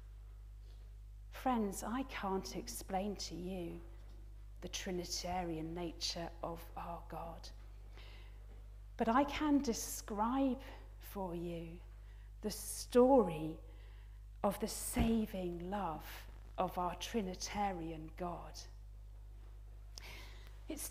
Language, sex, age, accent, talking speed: English, female, 40-59, British, 85 wpm